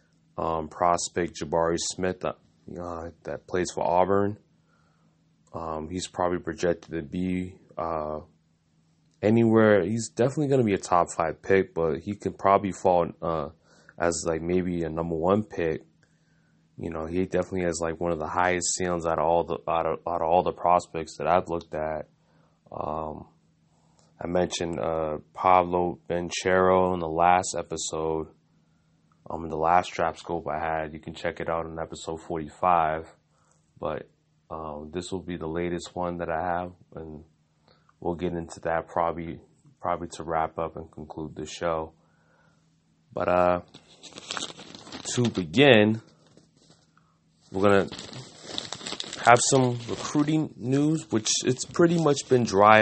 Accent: American